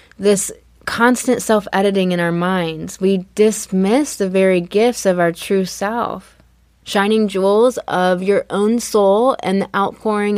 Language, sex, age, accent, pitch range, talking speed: English, female, 20-39, American, 185-235 Hz, 140 wpm